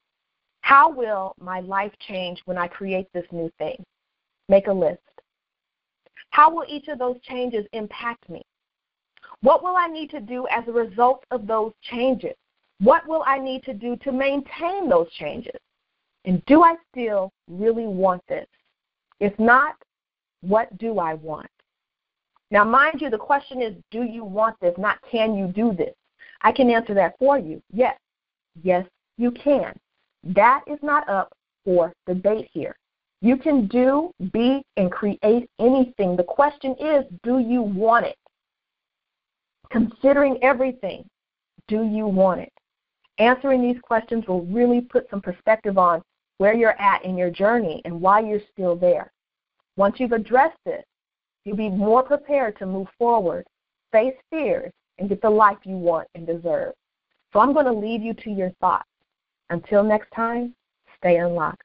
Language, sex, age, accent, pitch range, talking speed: English, female, 40-59, American, 195-260 Hz, 160 wpm